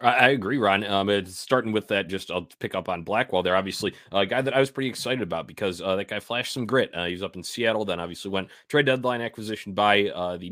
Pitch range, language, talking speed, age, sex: 90-115 Hz, English, 265 wpm, 30-49, male